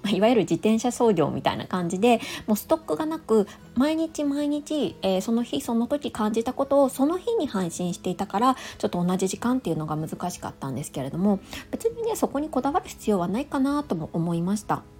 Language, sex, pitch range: Japanese, female, 170-265 Hz